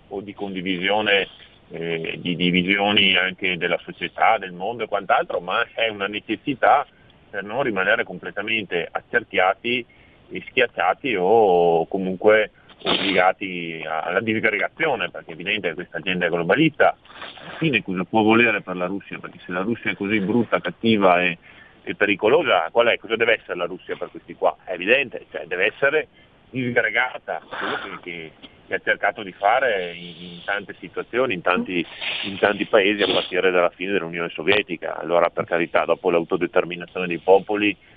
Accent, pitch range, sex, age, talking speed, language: native, 90-105 Hz, male, 40-59, 155 wpm, Italian